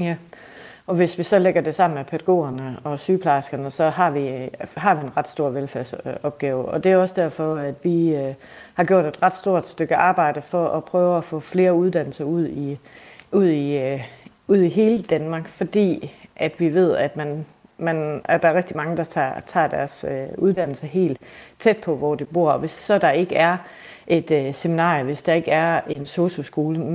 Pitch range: 150-180 Hz